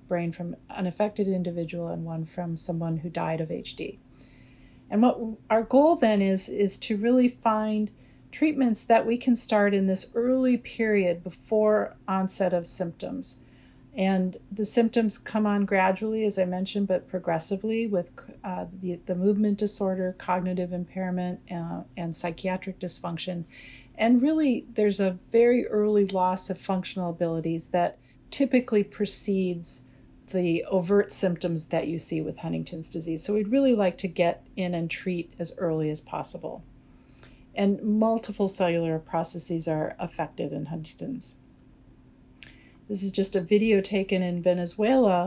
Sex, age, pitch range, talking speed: female, 50-69, 175-210 Hz, 145 wpm